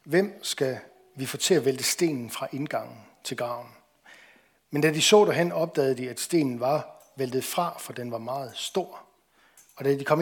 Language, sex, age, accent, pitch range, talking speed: Danish, male, 60-79, native, 130-170 Hz, 195 wpm